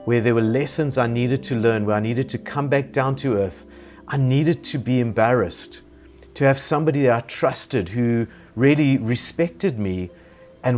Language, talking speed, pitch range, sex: English, 185 wpm, 110-145 Hz, male